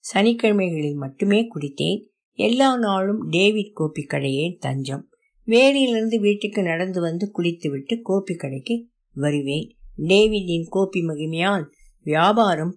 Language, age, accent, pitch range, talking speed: Tamil, 60-79, native, 160-220 Hz, 100 wpm